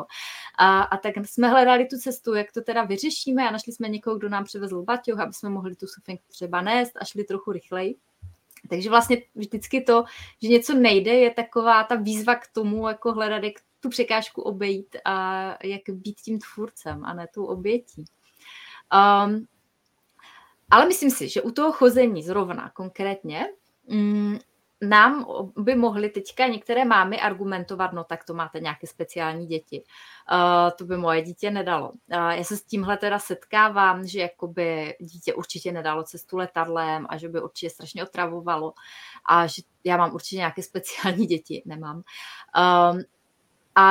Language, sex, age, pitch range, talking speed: Czech, female, 20-39, 180-230 Hz, 155 wpm